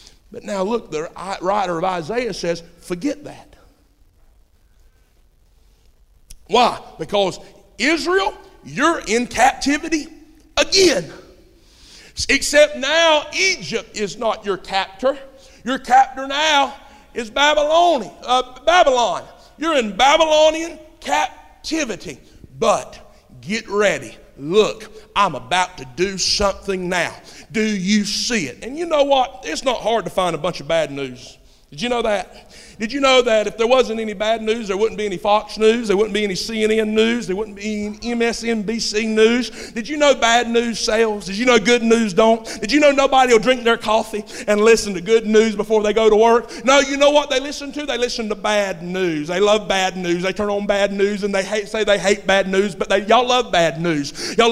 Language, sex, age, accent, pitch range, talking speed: English, male, 50-69, American, 200-265 Hz, 175 wpm